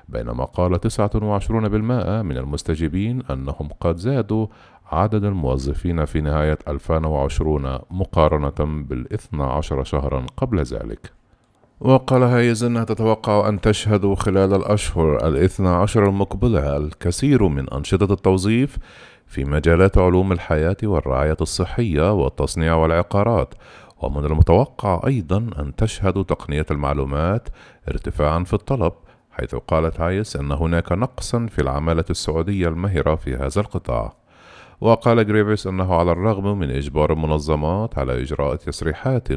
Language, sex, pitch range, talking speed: Arabic, male, 75-105 Hz, 115 wpm